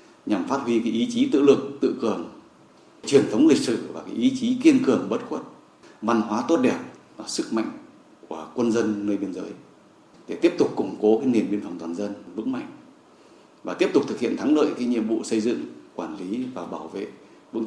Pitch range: 105-140 Hz